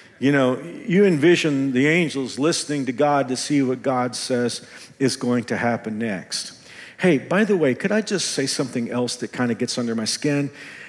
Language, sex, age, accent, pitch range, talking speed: English, male, 50-69, American, 130-180 Hz, 200 wpm